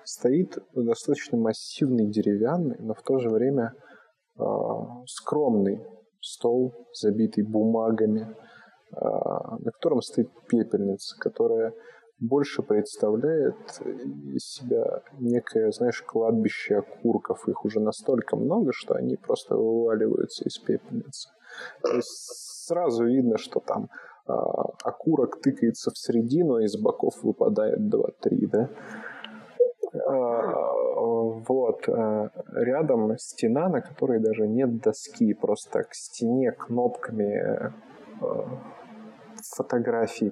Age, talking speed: 20-39, 100 wpm